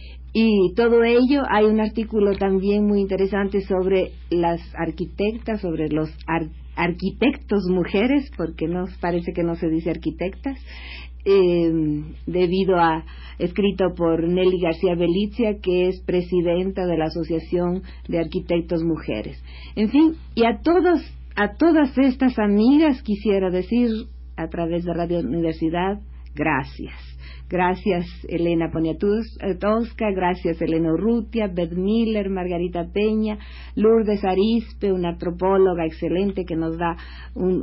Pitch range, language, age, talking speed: 170-215 Hz, Spanish, 50-69, 125 wpm